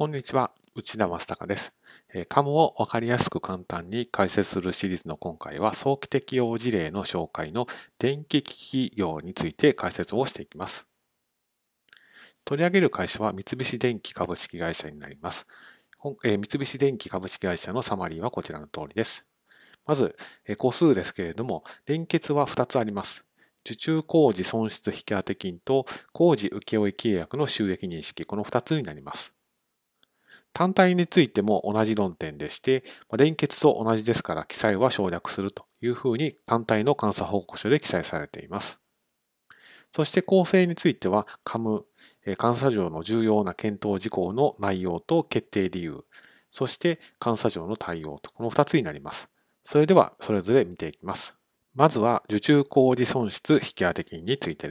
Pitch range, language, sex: 100-145 Hz, Japanese, male